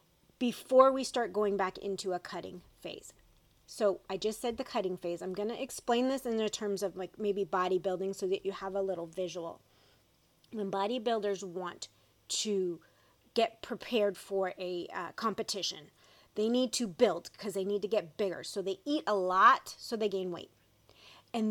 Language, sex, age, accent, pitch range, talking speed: English, female, 30-49, American, 190-235 Hz, 180 wpm